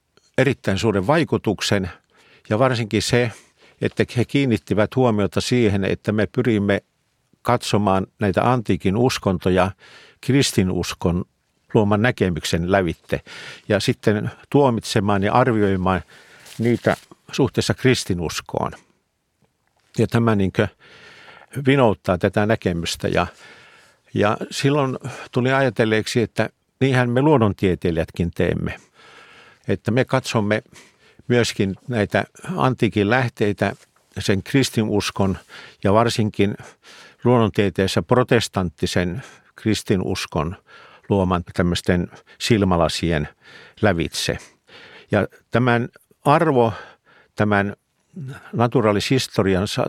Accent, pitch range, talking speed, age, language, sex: native, 100-125 Hz, 85 wpm, 50-69, Finnish, male